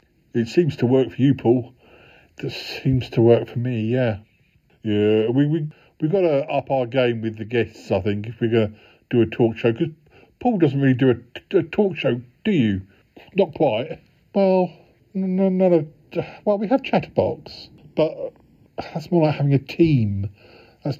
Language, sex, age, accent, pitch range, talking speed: English, male, 50-69, British, 110-150 Hz, 185 wpm